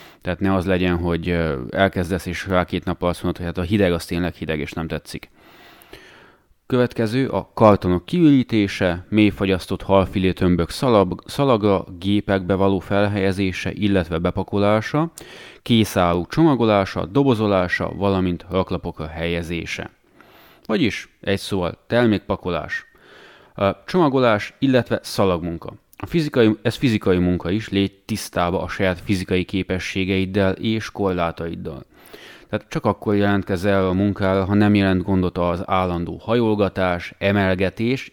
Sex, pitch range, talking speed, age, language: male, 90-110 Hz, 120 wpm, 30-49, Hungarian